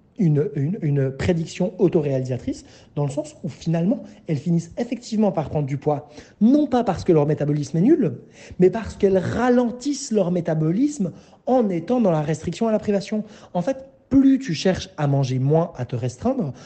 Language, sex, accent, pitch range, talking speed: French, male, French, 145-195 Hz, 180 wpm